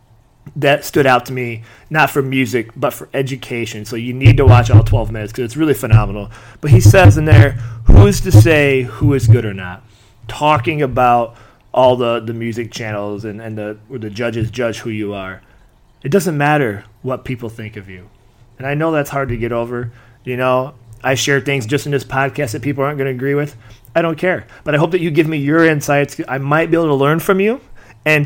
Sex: male